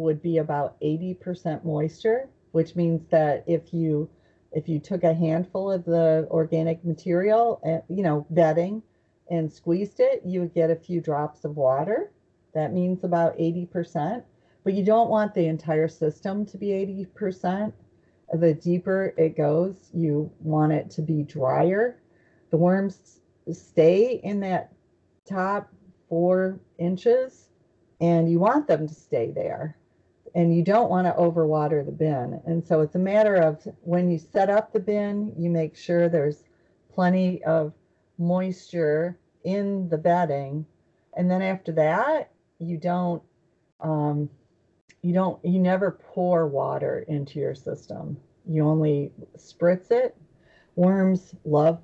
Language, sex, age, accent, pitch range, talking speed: English, female, 40-59, American, 160-185 Hz, 145 wpm